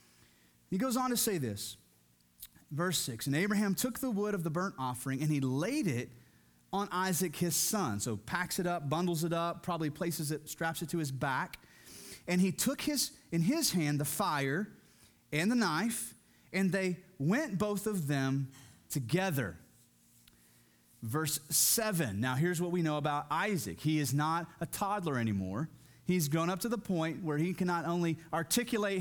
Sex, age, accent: male, 30-49, American